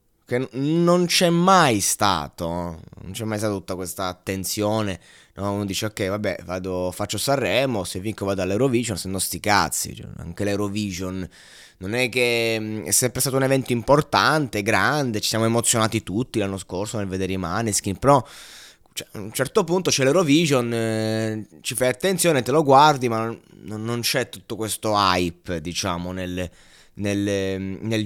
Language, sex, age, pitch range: Italian, male, 20-39, 100-140 Hz